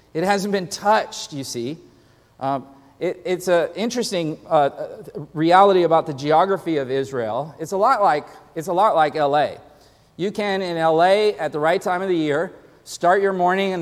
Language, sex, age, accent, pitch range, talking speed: English, male, 40-59, American, 165-205 Hz, 180 wpm